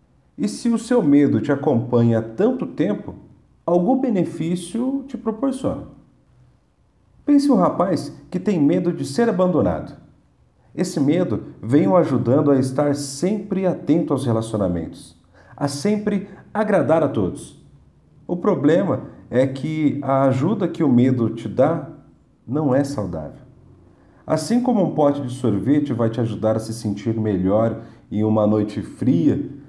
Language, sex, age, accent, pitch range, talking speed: Portuguese, male, 50-69, Brazilian, 115-165 Hz, 140 wpm